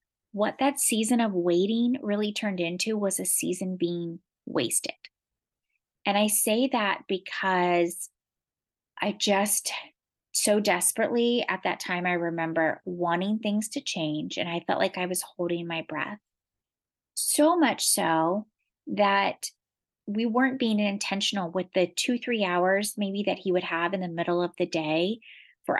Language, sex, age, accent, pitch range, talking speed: English, female, 30-49, American, 175-220 Hz, 150 wpm